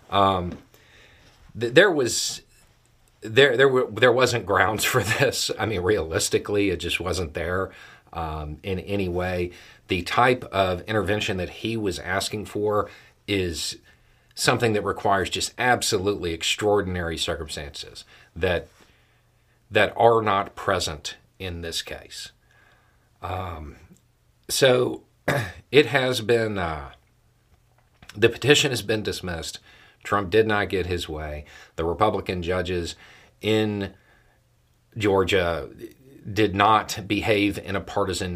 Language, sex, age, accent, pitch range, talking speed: English, male, 40-59, American, 90-110 Hz, 120 wpm